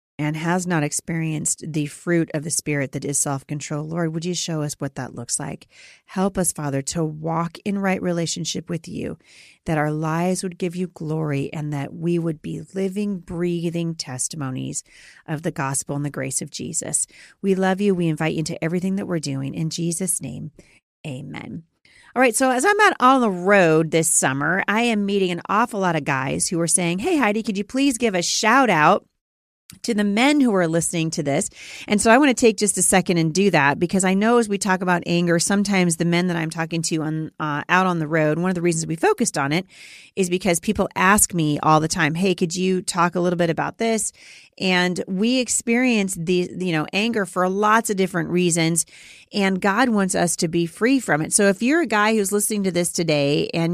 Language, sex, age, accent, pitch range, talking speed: English, female, 40-59, American, 160-205 Hz, 220 wpm